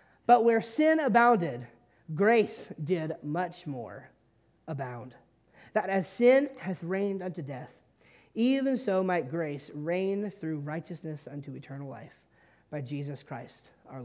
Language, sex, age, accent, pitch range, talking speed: English, male, 30-49, American, 150-190 Hz, 130 wpm